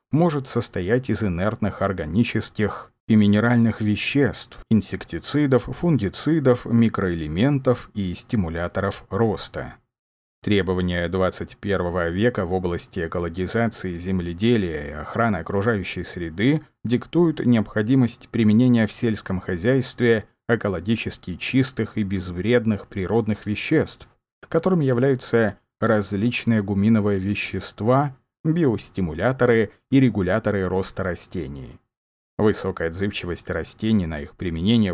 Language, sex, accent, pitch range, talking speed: Russian, male, native, 95-120 Hz, 90 wpm